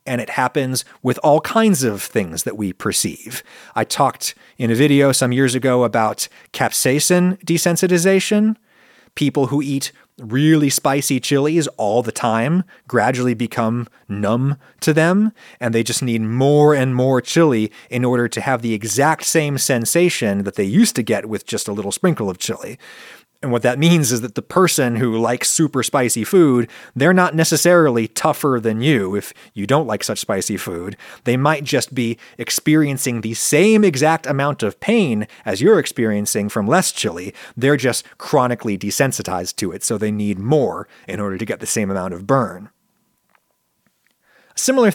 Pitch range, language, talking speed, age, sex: 115-155 Hz, English, 170 wpm, 30-49, male